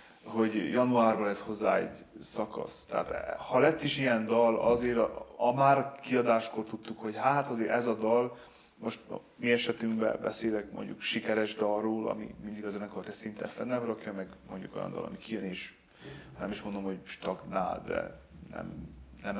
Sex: male